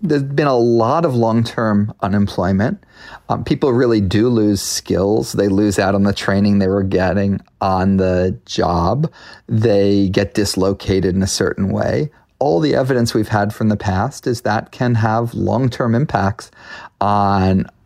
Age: 30-49